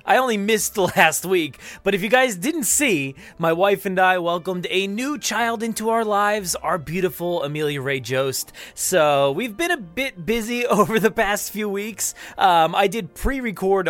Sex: male